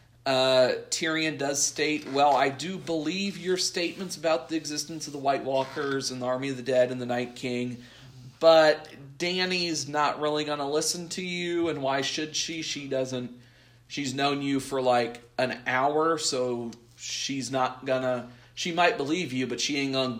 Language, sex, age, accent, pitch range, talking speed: English, male, 40-59, American, 125-160 Hz, 180 wpm